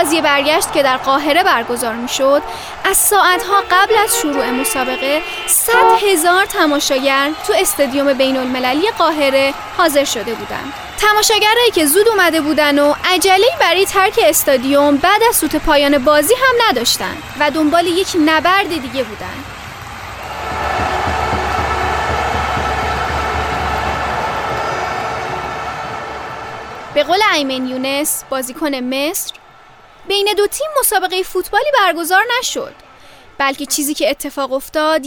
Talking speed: 115 wpm